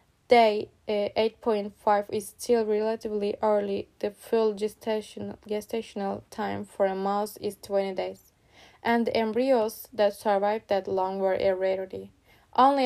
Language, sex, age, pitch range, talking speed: English, female, 20-39, 200-220 Hz, 125 wpm